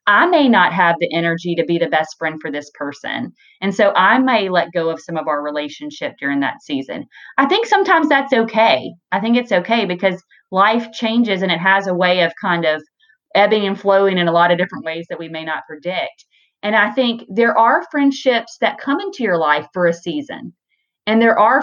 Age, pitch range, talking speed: 30-49, 175-235 Hz, 220 wpm